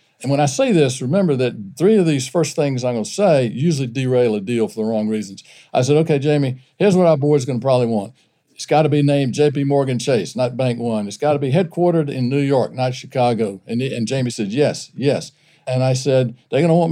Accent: American